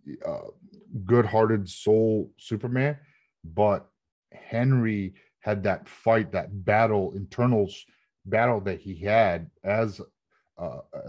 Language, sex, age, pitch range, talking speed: English, male, 30-49, 95-115 Hz, 105 wpm